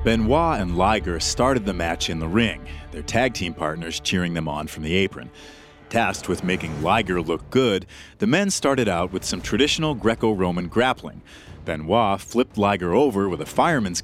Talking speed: 175 wpm